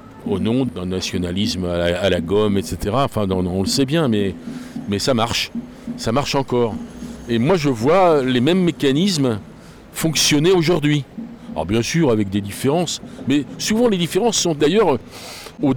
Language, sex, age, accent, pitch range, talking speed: French, male, 50-69, French, 115-165 Hz, 160 wpm